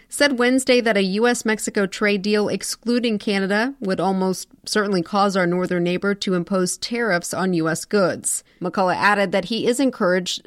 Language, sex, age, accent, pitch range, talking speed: English, female, 40-59, American, 180-220 Hz, 160 wpm